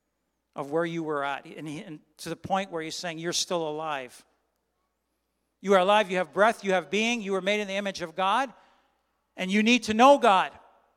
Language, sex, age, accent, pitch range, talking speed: English, male, 50-69, American, 220-275 Hz, 210 wpm